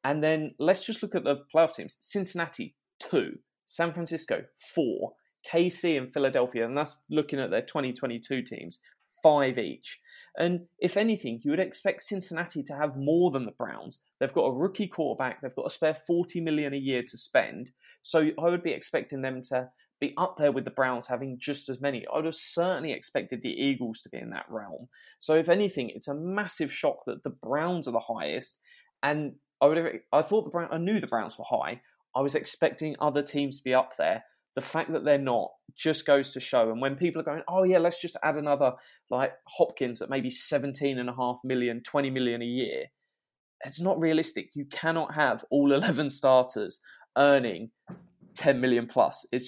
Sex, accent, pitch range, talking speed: male, British, 130-170 Hz, 200 wpm